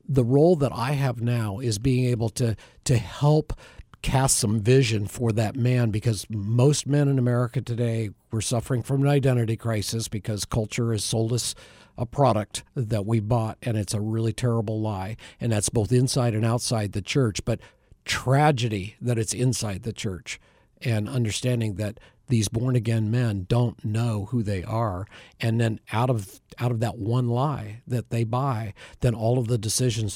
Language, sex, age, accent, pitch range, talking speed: English, male, 50-69, American, 110-125 Hz, 175 wpm